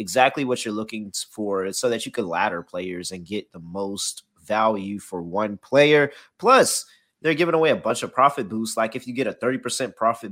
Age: 20-39